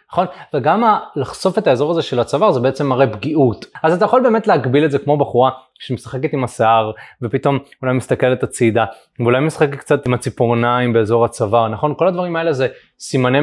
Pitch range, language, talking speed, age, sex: 120-165 Hz, Hebrew, 190 wpm, 20-39, male